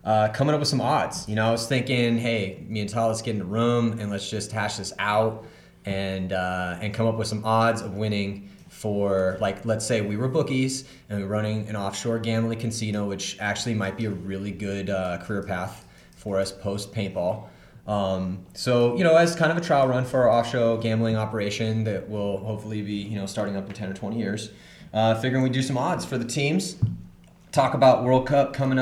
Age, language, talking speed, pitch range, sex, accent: 30-49, English, 225 wpm, 100-125 Hz, male, American